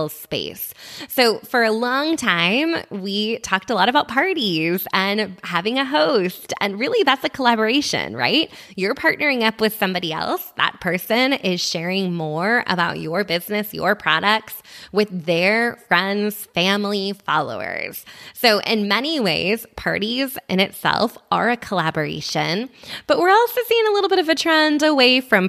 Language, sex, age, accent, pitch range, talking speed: English, female, 20-39, American, 175-240 Hz, 155 wpm